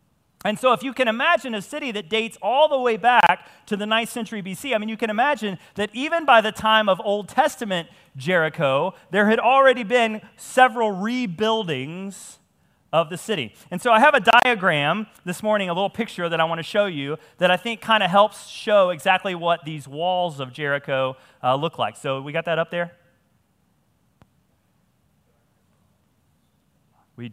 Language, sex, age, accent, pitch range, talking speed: English, male, 30-49, American, 170-230 Hz, 180 wpm